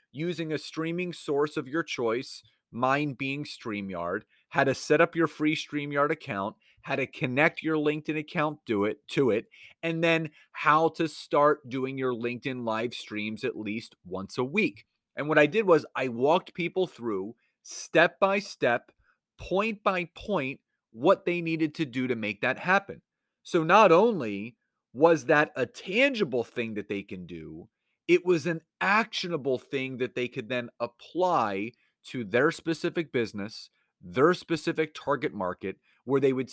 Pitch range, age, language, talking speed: 120-160 Hz, 30-49, English, 155 wpm